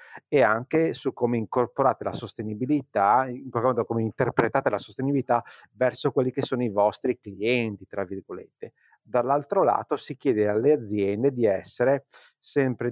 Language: Italian